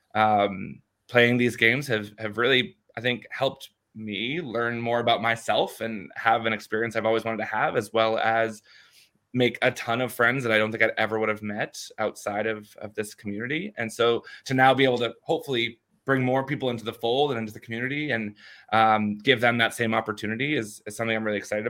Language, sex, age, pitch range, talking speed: English, male, 20-39, 110-125 Hz, 215 wpm